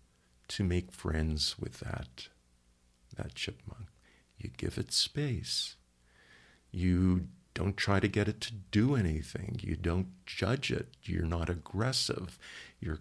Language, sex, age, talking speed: English, male, 50-69, 130 wpm